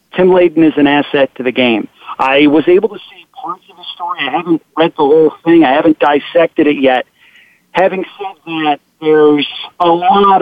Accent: American